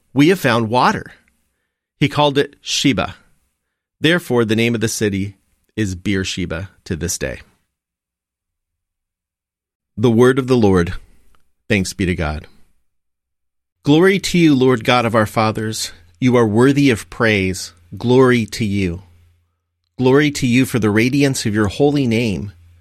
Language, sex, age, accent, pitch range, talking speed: English, male, 40-59, American, 85-125 Hz, 140 wpm